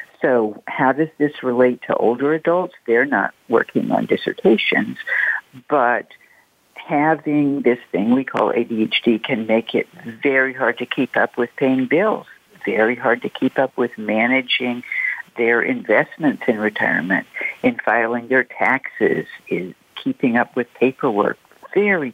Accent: American